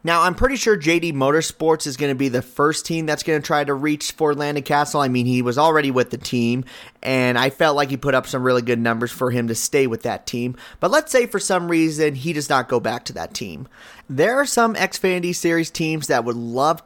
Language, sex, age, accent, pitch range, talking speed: English, male, 30-49, American, 130-160 Hz, 255 wpm